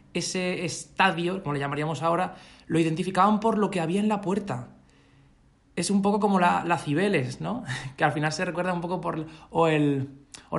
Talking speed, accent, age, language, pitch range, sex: 195 wpm, Spanish, 20-39, Spanish, 145-195 Hz, male